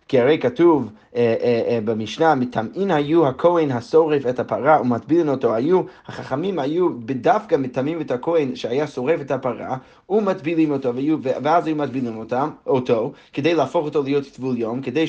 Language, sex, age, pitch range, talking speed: Hebrew, male, 30-49, 130-175 Hz, 165 wpm